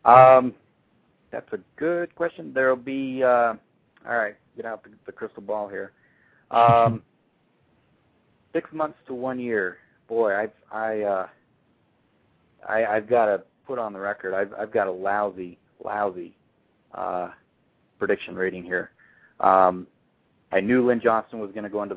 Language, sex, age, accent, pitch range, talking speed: English, male, 40-59, American, 95-115 Hz, 150 wpm